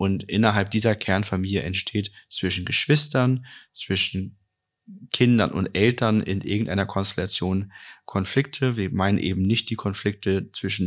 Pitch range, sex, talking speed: 100-120 Hz, male, 120 wpm